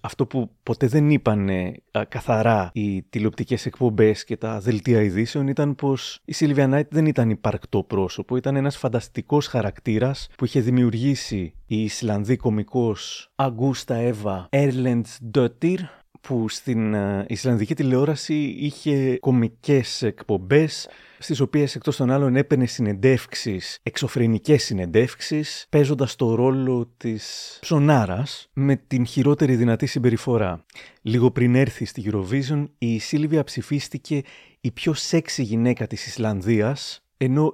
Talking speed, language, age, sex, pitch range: 125 wpm, Greek, 30-49, male, 110-145 Hz